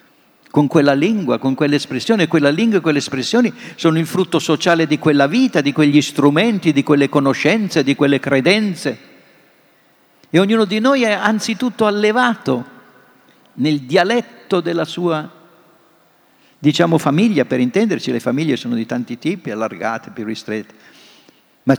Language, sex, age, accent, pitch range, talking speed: Italian, male, 50-69, native, 140-195 Hz, 140 wpm